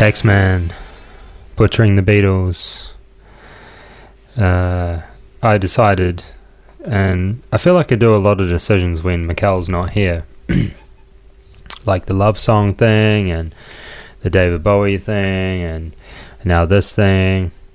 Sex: male